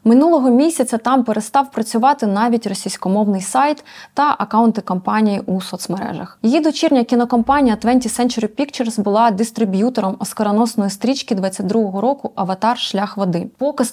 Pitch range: 210-255 Hz